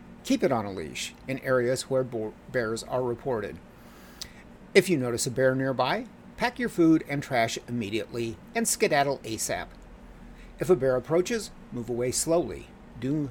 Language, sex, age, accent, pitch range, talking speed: English, male, 50-69, American, 120-190 Hz, 155 wpm